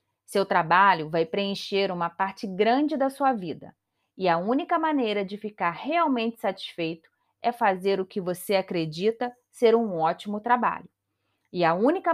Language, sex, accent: Portuguese, female, Brazilian